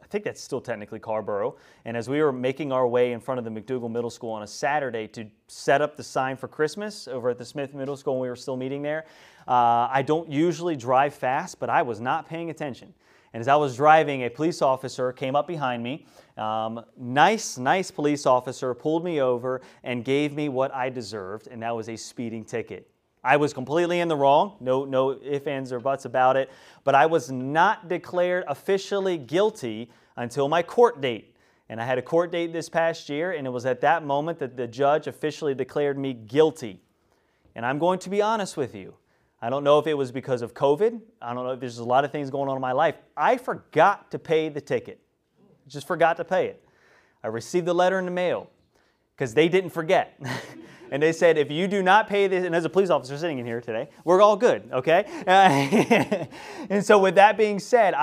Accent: American